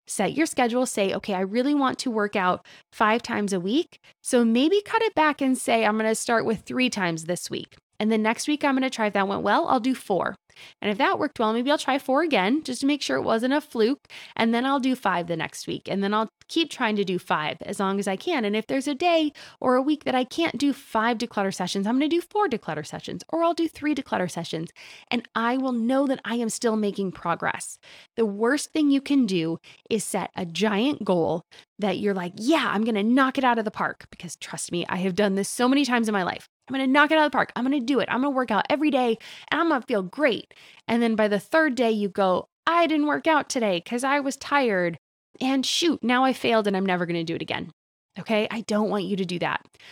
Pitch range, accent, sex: 205-275 Hz, American, female